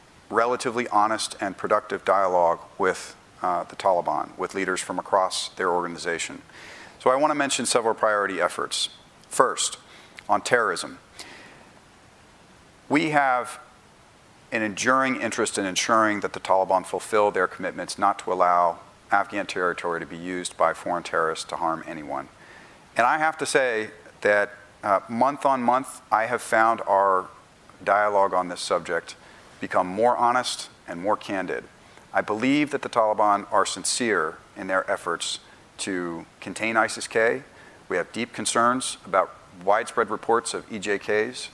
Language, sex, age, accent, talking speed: English, male, 40-59, American, 145 wpm